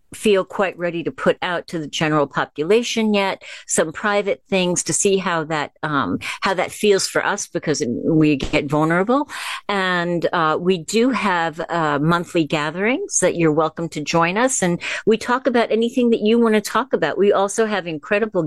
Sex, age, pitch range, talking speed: female, 50-69, 165-210 Hz, 185 wpm